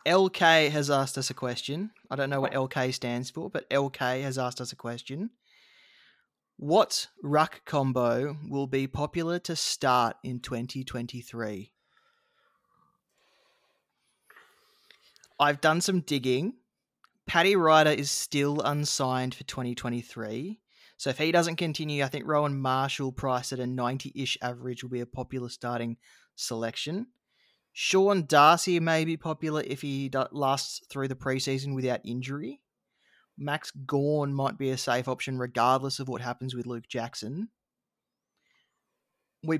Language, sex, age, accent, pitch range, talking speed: English, male, 20-39, Australian, 125-155 Hz, 135 wpm